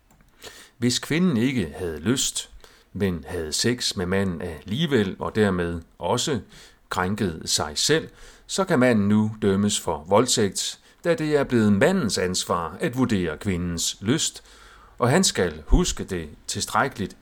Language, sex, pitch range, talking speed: Danish, male, 100-130 Hz, 140 wpm